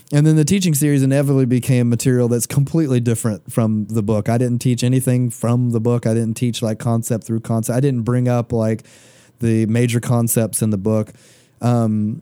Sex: male